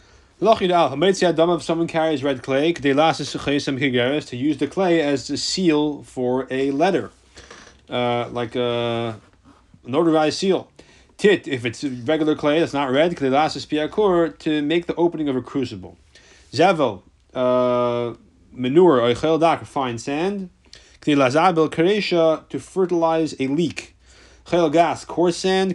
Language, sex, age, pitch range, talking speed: English, male, 30-49, 125-160 Hz, 140 wpm